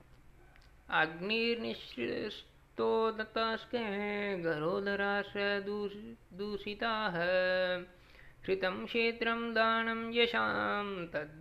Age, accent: 20-39, native